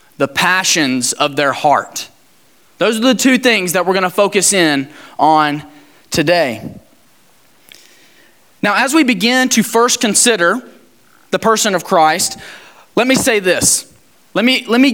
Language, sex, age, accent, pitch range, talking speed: English, male, 20-39, American, 180-240 Hz, 140 wpm